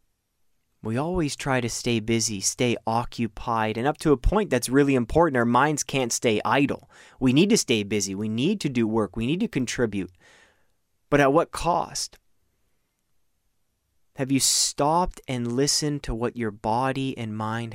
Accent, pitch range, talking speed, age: American, 115-160 Hz, 170 wpm, 20-39